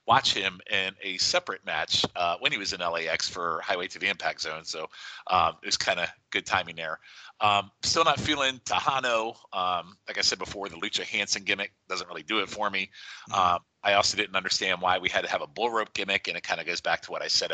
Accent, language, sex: American, English, male